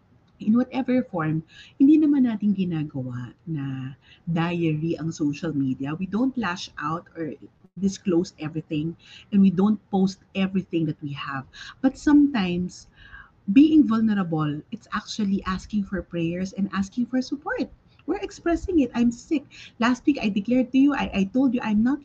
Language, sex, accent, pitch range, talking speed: English, female, Filipino, 175-250 Hz, 155 wpm